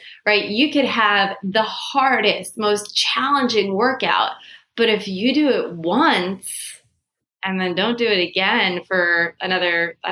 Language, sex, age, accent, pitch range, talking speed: English, female, 20-39, American, 180-225 Hz, 140 wpm